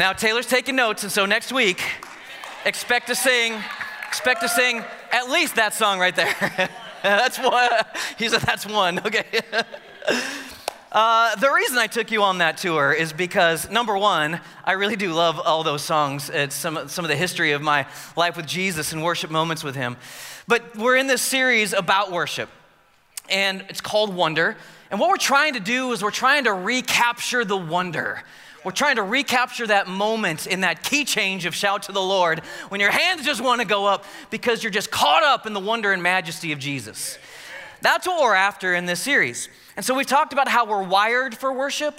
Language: English